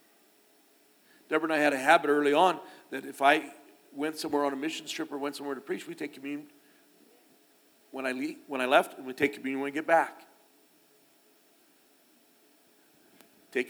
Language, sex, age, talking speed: English, male, 50-69, 175 wpm